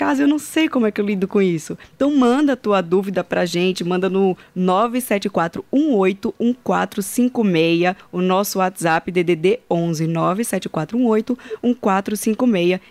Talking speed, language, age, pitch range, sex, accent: 120 wpm, Portuguese, 20-39, 180-225 Hz, female, Brazilian